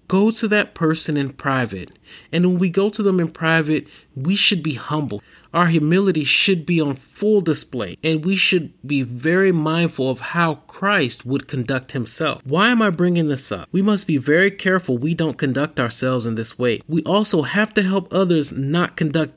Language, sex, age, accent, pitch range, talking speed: English, male, 30-49, American, 135-175 Hz, 195 wpm